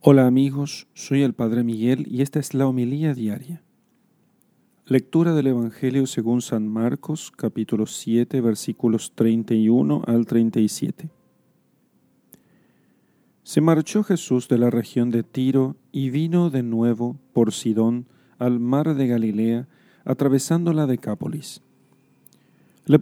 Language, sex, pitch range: Spanish, male, 115-145 Hz